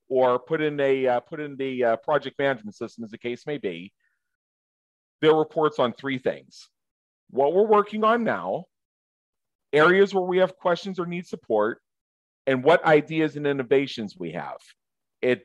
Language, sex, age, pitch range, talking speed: English, male, 40-59, 110-155 Hz, 165 wpm